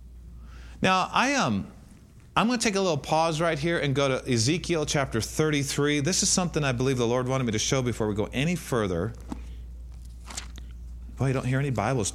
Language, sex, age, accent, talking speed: English, male, 40-59, American, 200 wpm